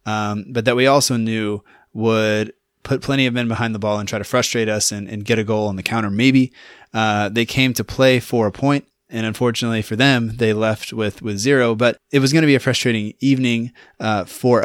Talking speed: 230 wpm